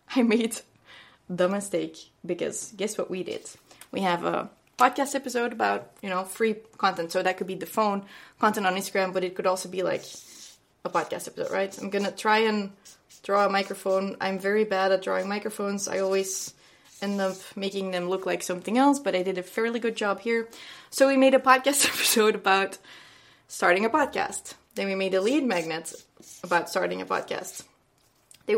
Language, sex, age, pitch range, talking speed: English, female, 20-39, 190-225 Hz, 190 wpm